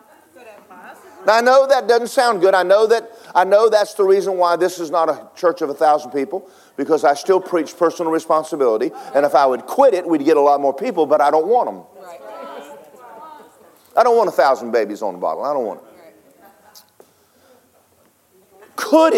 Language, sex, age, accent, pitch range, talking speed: English, male, 50-69, American, 155-240 Hz, 195 wpm